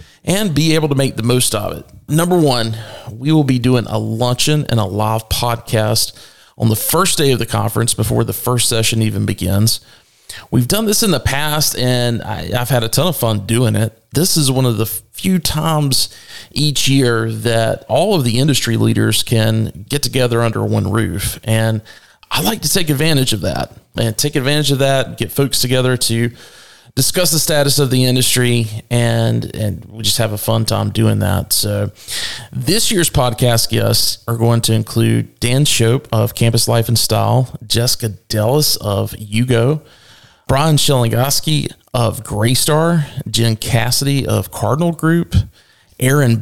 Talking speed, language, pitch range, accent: 170 wpm, English, 110-140 Hz, American